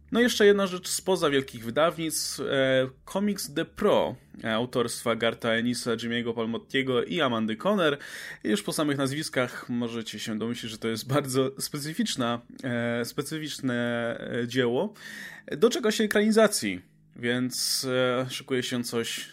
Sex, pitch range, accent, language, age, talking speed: male, 120-175 Hz, native, Polish, 20-39, 135 wpm